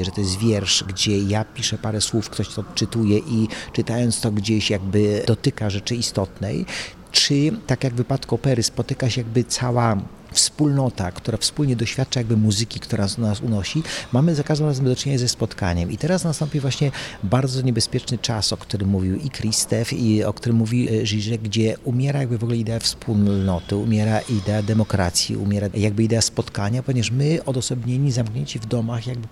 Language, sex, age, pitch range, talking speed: Polish, male, 40-59, 105-130 Hz, 170 wpm